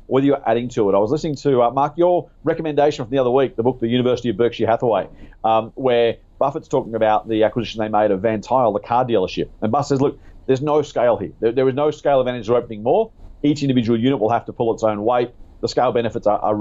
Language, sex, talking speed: English, male, 255 wpm